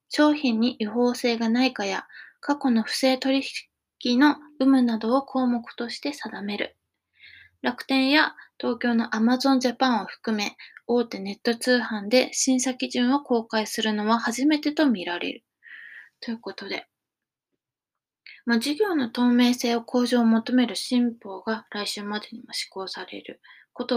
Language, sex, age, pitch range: Japanese, female, 20-39, 220-265 Hz